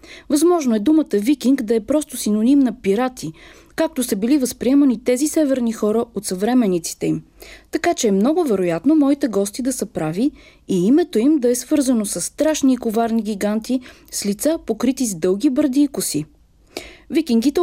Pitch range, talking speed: 215-295 Hz, 170 wpm